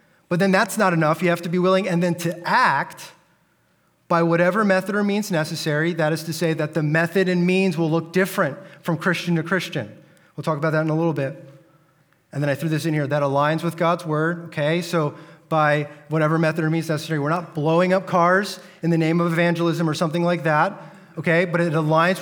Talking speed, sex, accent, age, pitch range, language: 220 wpm, male, American, 30-49, 155-185 Hz, English